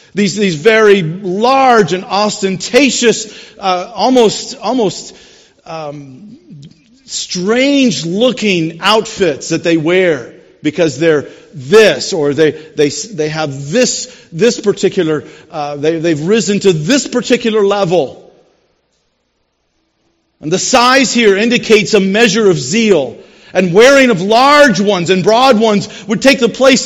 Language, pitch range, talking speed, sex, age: English, 190-245 Hz, 125 wpm, male, 50-69